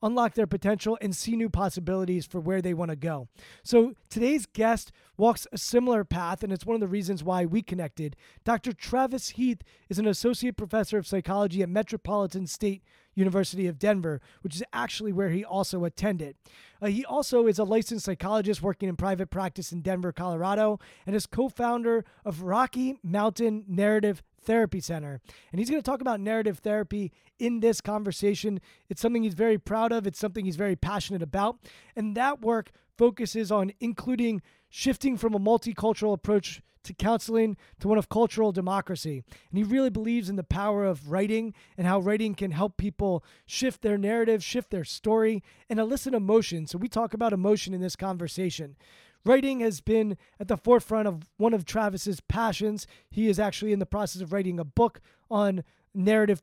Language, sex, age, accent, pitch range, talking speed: English, male, 20-39, American, 190-225 Hz, 180 wpm